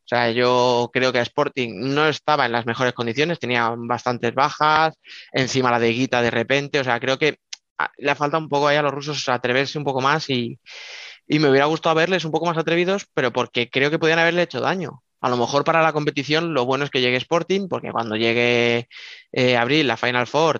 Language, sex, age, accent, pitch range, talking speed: Spanish, male, 20-39, Spanish, 120-150 Hz, 225 wpm